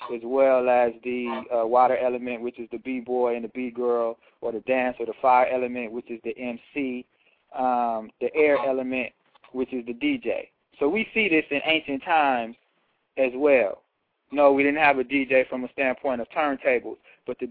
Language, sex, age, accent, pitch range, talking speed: English, male, 20-39, American, 120-140 Hz, 190 wpm